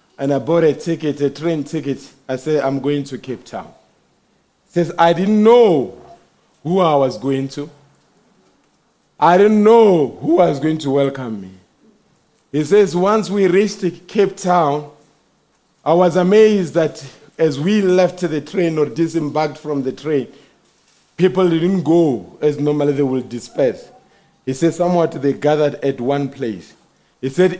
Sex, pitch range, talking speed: male, 150-200 Hz, 160 wpm